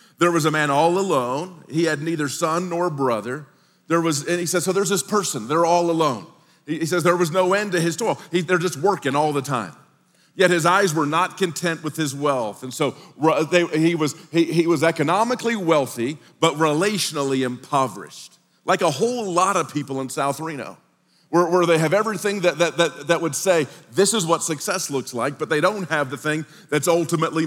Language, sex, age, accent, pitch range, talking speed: English, male, 40-59, American, 150-185 Hz, 210 wpm